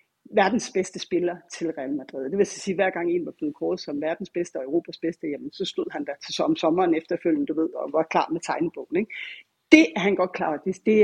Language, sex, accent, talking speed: Danish, female, native, 235 wpm